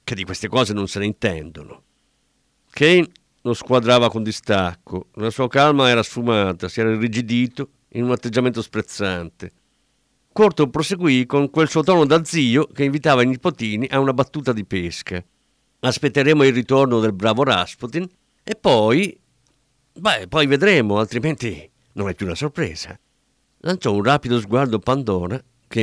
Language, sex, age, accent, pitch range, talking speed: Italian, male, 50-69, native, 95-155 Hz, 150 wpm